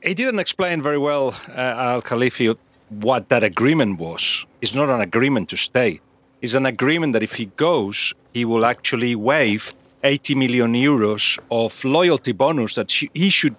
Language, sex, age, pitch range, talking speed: English, male, 40-59, 120-160 Hz, 170 wpm